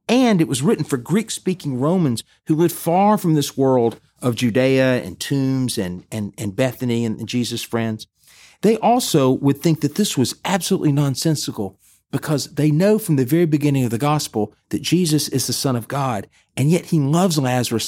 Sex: male